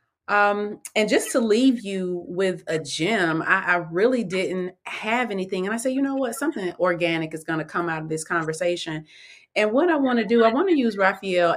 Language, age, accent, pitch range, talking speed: English, 30-49, American, 160-195 Hz, 220 wpm